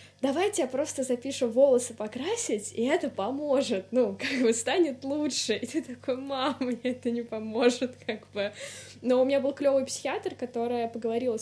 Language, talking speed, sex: Russian, 170 wpm, female